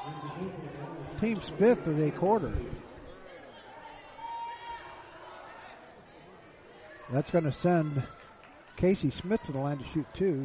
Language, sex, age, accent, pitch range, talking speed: English, male, 50-69, American, 135-175 Hz, 100 wpm